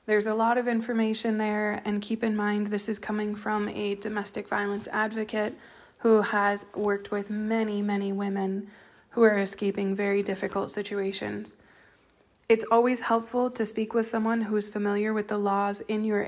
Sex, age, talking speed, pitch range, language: female, 20-39, 170 wpm, 205-230 Hz, English